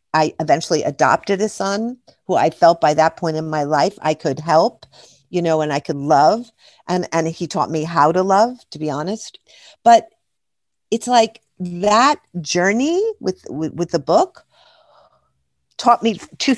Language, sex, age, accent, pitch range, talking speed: English, female, 50-69, American, 155-210 Hz, 170 wpm